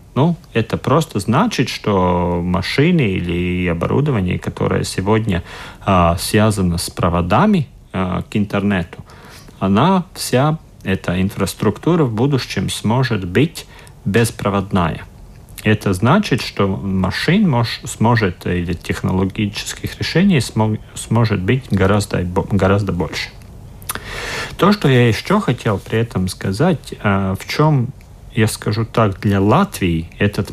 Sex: male